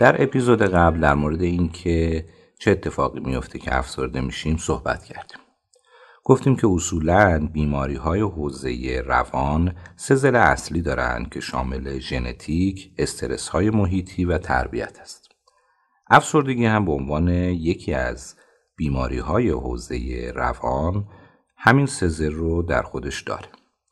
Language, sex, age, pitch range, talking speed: English, male, 50-69, 75-105 Hz, 125 wpm